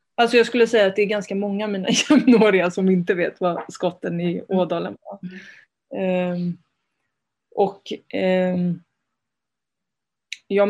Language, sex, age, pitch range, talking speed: Swedish, female, 20-39, 185-215 Hz, 125 wpm